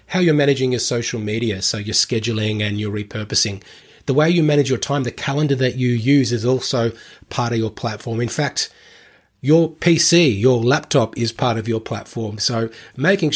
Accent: Australian